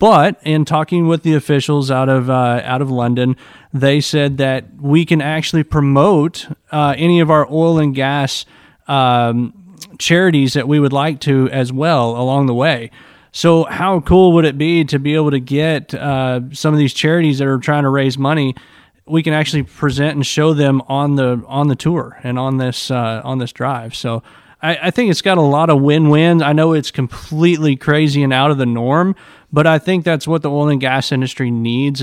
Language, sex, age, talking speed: English, male, 30-49, 205 wpm